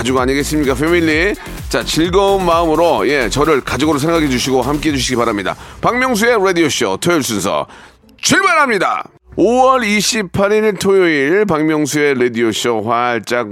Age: 40-59